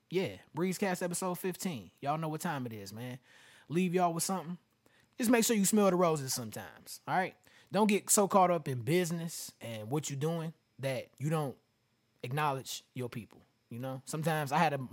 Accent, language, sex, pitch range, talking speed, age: American, English, male, 135-185 Hz, 195 wpm, 20-39